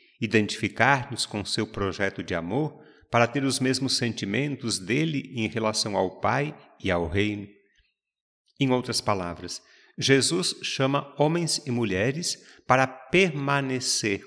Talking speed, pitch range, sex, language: 120 wpm, 110-150 Hz, male, Portuguese